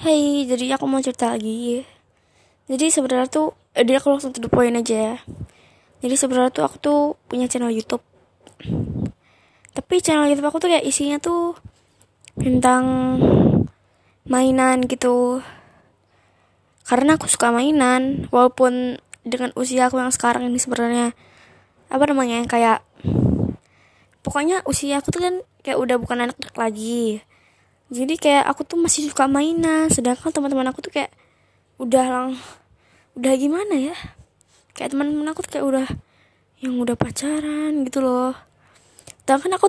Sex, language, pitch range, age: female, Indonesian, 245-290 Hz, 20-39